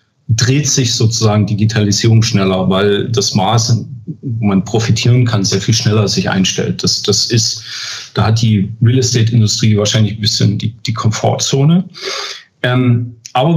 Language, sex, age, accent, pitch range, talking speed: German, male, 40-59, German, 110-125 Hz, 140 wpm